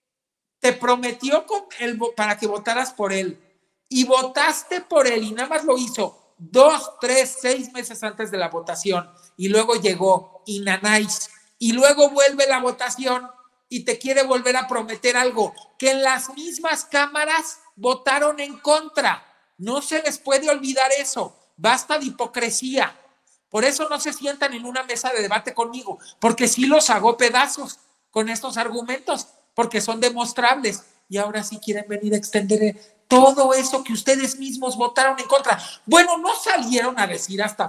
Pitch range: 195-260 Hz